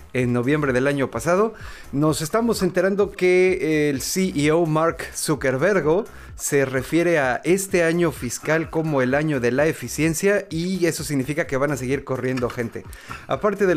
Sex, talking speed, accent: male, 155 wpm, Mexican